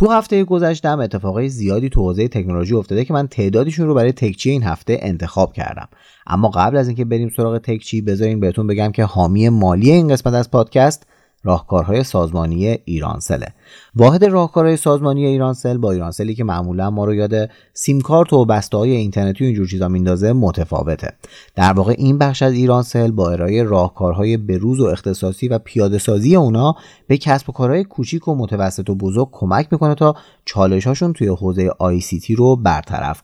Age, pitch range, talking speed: 30-49, 95-135 Hz, 170 wpm